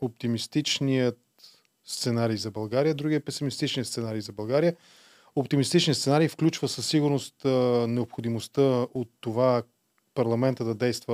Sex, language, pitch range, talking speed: male, Bulgarian, 115-140 Hz, 115 wpm